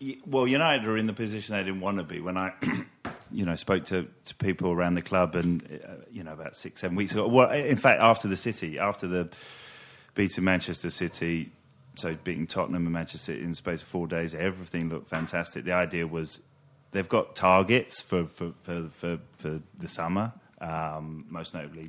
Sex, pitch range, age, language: male, 80-95 Hz, 30-49, English